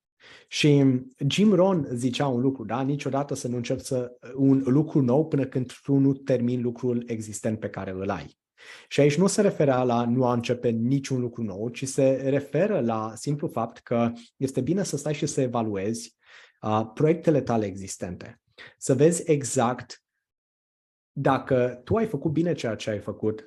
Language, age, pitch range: Romanian, 20-39, 115-150 Hz